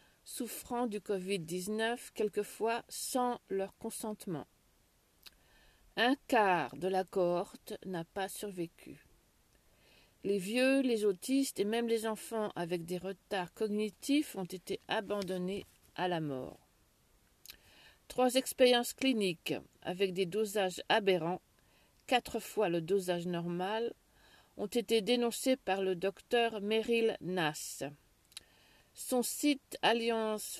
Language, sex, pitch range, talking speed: French, female, 180-230 Hz, 110 wpm